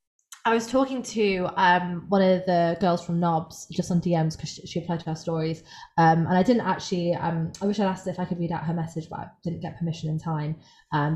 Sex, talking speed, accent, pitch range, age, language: female, 250 wpm, British, 170-195 Hz, 20-39, English